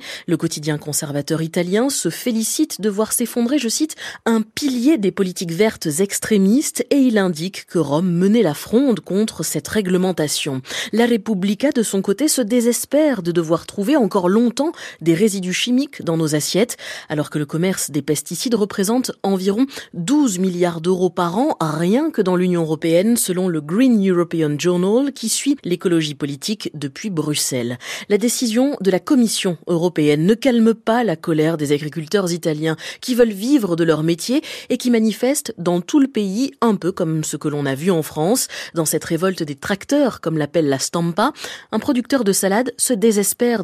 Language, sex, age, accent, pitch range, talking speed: French, female, 20-39, French, 170-240 Hz, 175 wpm